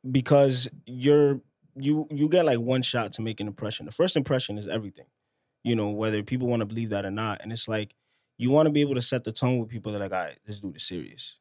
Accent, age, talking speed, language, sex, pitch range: American, 20-39, 270 wpm, English, male, 110-130 Hz